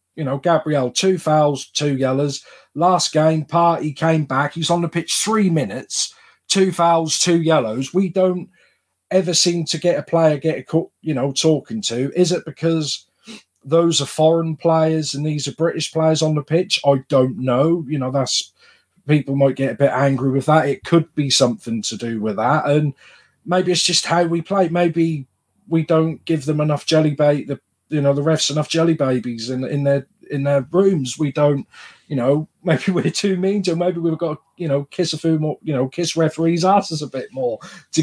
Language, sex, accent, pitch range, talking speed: English, male, British, 140-170 Hz, 210 wpm